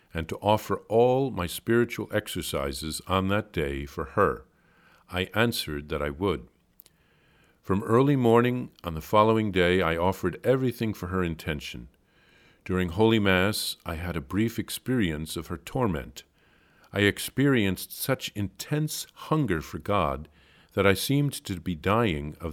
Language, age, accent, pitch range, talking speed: English, 50-69, American, 80-110 Hz, 145 wpm